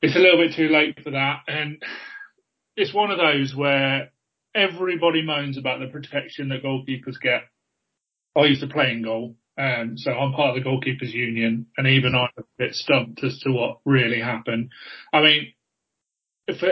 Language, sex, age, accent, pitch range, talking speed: English, male, 30-49, British, 130-160 Hz, 180 wpm